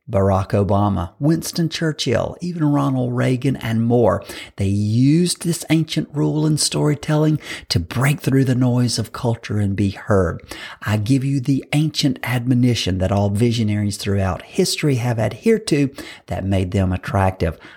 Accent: American